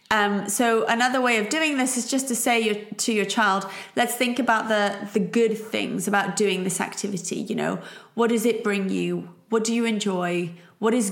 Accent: British